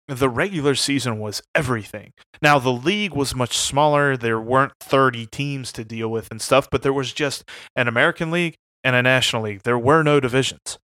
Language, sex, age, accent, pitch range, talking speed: English, male, 30-49, American, 120-145 Hz, 190 wpm